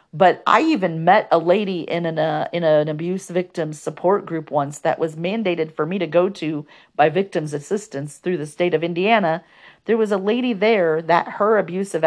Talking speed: 200 wpm